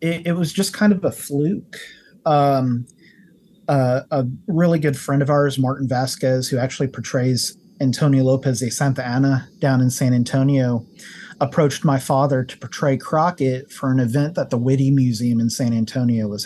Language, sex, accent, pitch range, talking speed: English, male, American, 125-150 Hz, 170 wpm